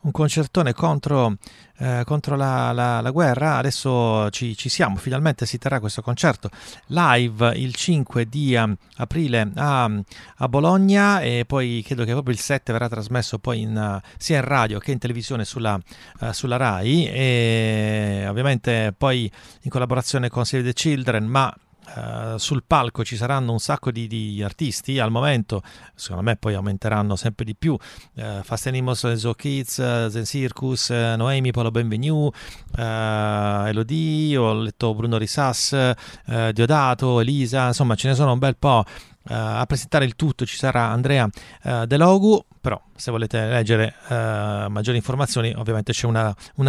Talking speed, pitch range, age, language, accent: 165 wpm, 115-140 Hz, 40-59, Italian, native